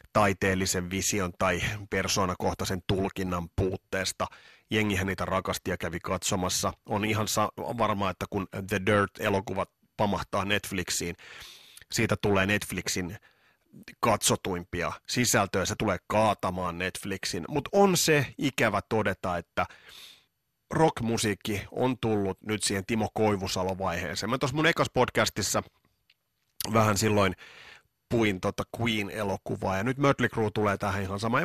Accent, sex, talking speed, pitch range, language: native, male, 110 wpm, 95-125 Hz, Finnish